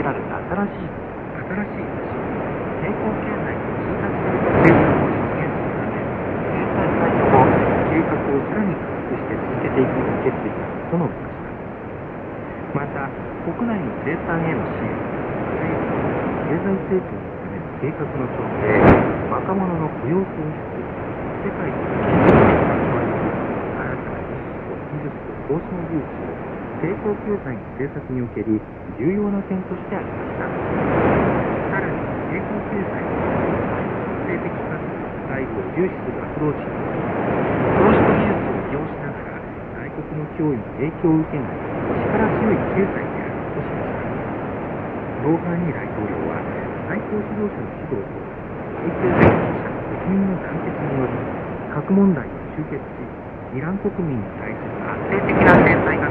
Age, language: 60-79, Korean